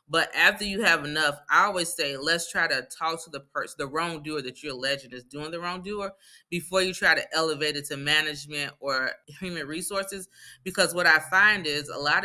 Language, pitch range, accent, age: English, 145-185 Hz, American, 20-39